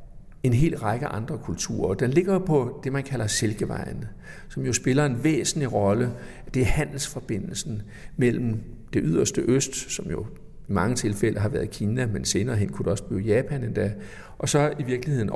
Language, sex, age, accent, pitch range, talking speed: Danish, male, 60-79, native, 105-140 Hz, 180 wpm